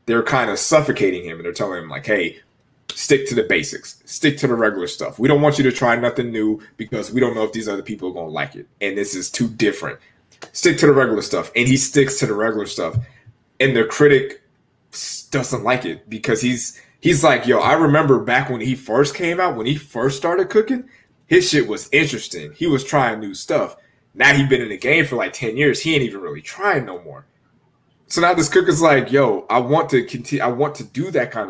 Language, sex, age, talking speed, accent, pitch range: English, male, 20-39, 240 wpm, American, 115-150 Hz